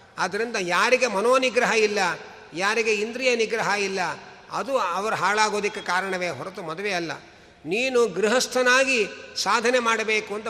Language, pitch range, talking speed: Kannada, 185-230 Hz, 120 wpm